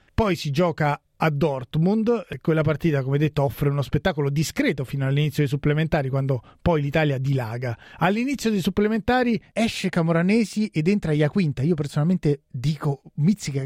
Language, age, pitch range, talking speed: Italian, 30-49, 145-185 Hz, 150 wpm